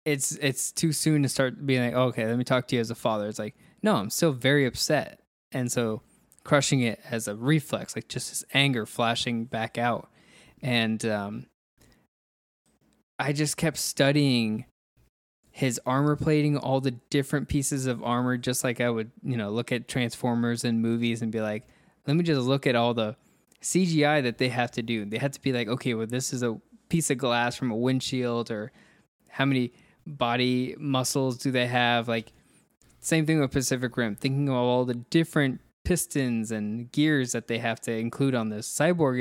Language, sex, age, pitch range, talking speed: English, male, 20-39, 115-140 Hz, 195 wpm